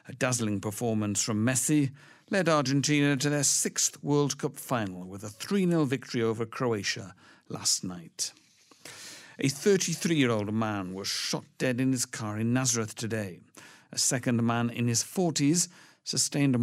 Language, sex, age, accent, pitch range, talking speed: English, male, 50-69, British, 105-140 Hz, 155 wpm